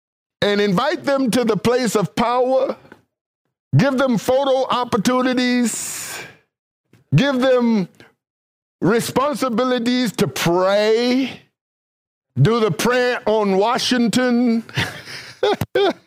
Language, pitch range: English, 195-250 Hz